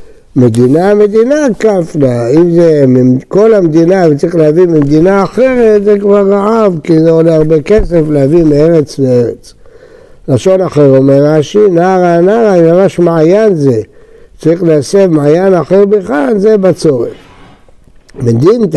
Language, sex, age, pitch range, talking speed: Hebrew, male, 60-79, 155-220 Hz, 130 wpm